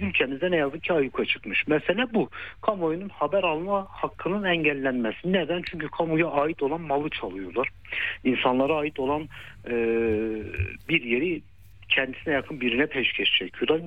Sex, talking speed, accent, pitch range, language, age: male, 135 wpm, native, 110-155 Hz, Turkish, 60-79